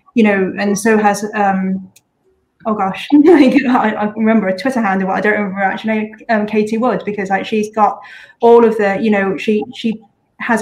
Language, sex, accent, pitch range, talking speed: English, female, British, 195-230 Hz, 190 wpm